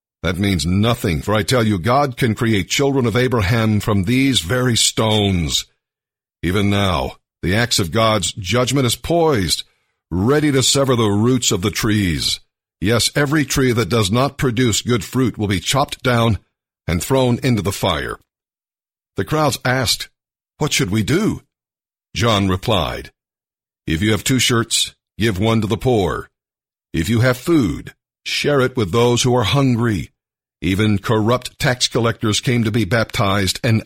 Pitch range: 105-130 Hz